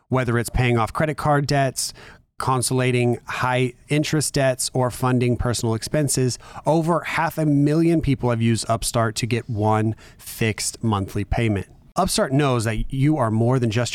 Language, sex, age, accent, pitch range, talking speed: English, male, 30-49, American, 105-135 Hz, 160 wpm